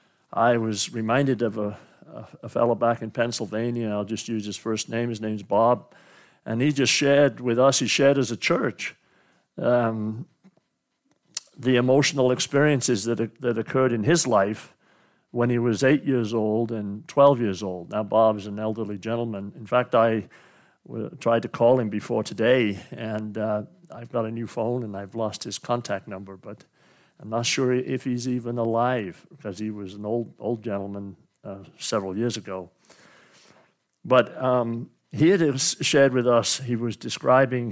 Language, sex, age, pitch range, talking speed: English, male, 50-69, 110-125 Hz, 175 wpm